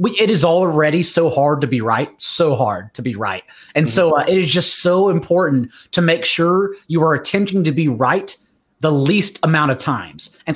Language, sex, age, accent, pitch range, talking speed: English, male, 30-49, American, 145-185 Hz, 205 wpm